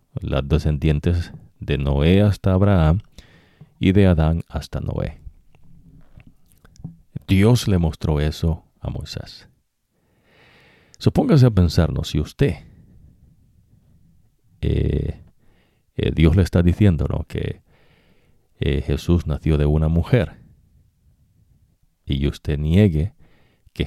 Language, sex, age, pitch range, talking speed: English, male, 50-69, 75-100 Hz, 100 wpm